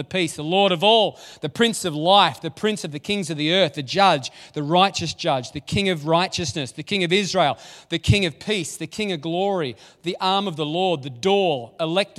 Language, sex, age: English, male, 30-49